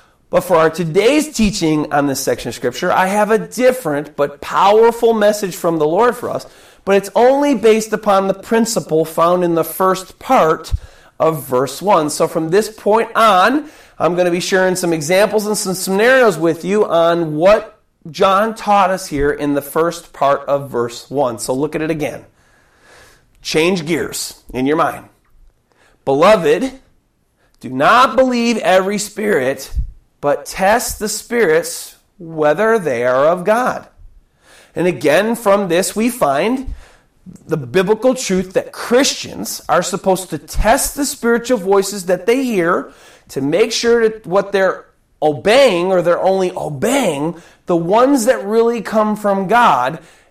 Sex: male